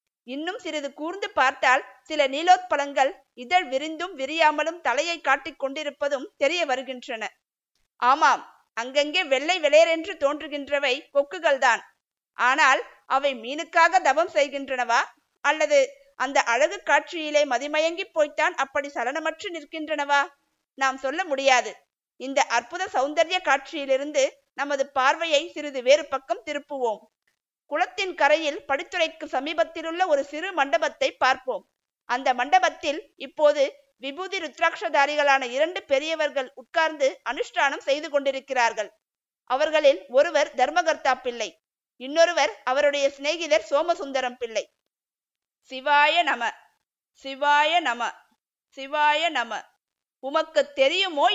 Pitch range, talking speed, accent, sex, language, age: 270-320 Hz, 100 wpm, native, female, Tamil, 50-69